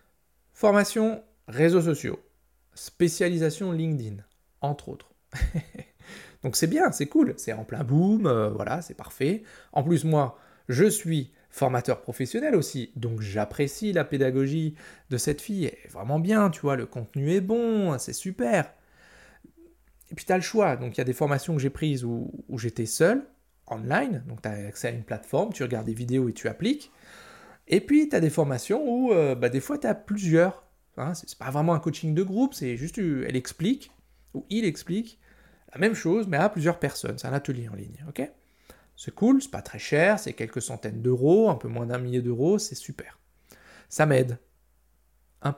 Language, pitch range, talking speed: French, 125-195 Hz, 195 wpm